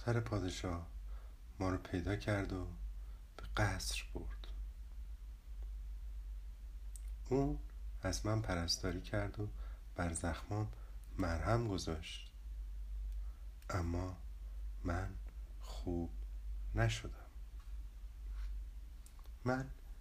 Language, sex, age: Persian, male, 50-69